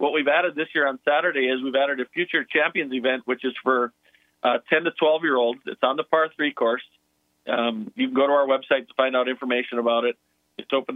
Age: 40-59